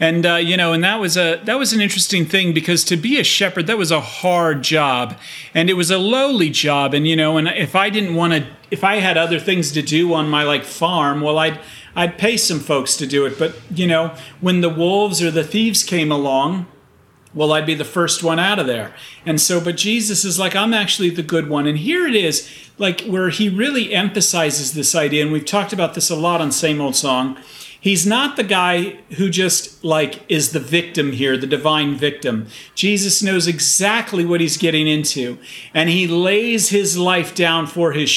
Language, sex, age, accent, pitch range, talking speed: English, male, 40-59, American, 160-200 Hz, 220 wpm